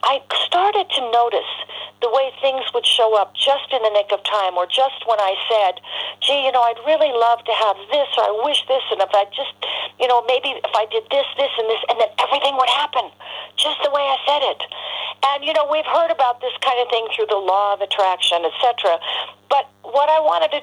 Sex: female